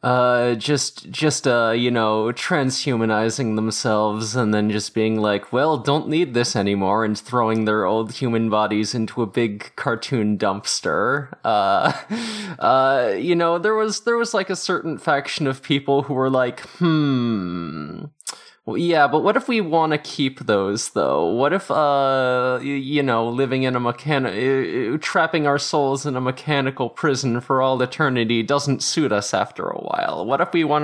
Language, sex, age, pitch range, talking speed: English, male, 20-39, 115-150 Hz, 165 wpm